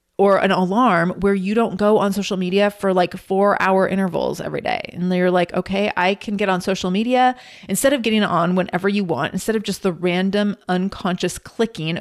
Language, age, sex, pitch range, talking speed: English, 30-49, female, 175-205 Hz, 205 wpm